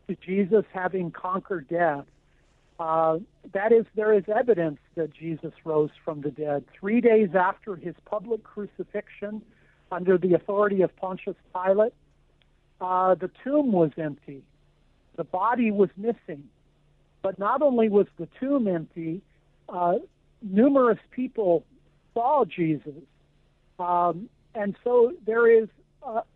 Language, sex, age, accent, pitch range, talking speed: English, male, 60-79, American, 170-225 Hz, 125 wpm